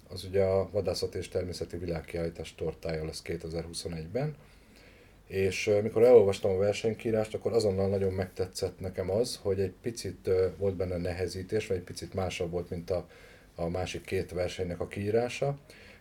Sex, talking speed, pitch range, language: male, 145 wpm, 90-105 Hz, Hungarian